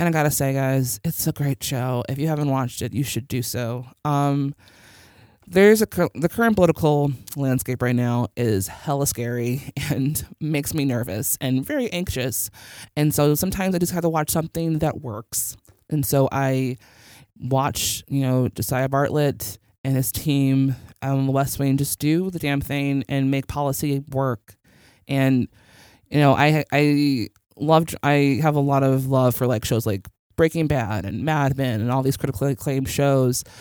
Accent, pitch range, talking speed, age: American, 120-140 Hz, 180 wpm, 20-39